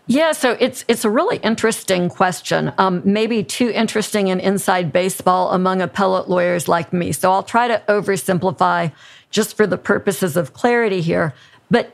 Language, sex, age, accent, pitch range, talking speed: English, female, 50-69, American, 175-210 Hz, 165 wpm